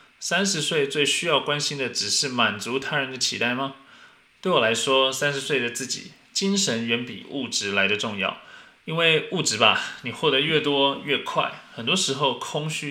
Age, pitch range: 20-39, 115-145 Hz